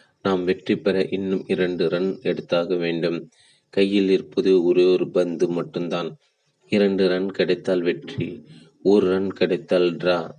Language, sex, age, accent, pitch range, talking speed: Tamil, male, 30-49, native, 90-95 Hz, 125 wpm